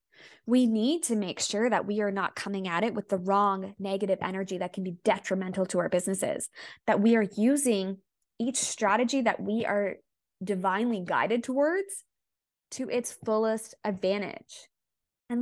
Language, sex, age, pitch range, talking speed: English, female, 20-39, 200-240 Hz, 160 wpm